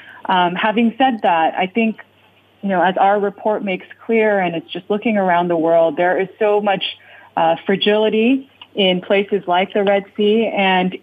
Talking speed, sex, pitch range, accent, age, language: 180 wpm, female, 170-210 Hz, American, 20-39, English